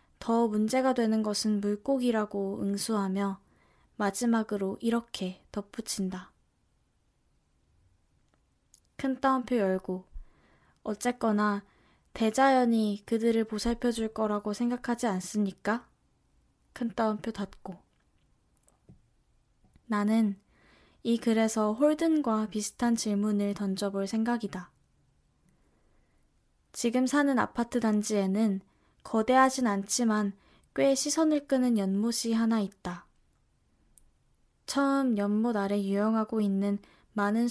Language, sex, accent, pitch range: Korean, female, native, 200-235 Hz